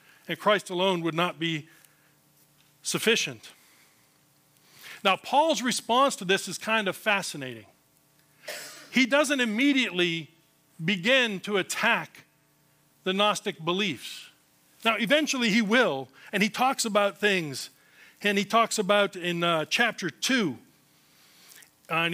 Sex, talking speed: male, 115 wpm